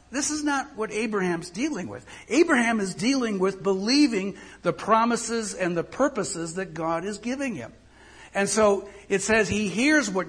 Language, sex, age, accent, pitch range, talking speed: English, male, 60-79, American, 160-225 Hz, 170 wpm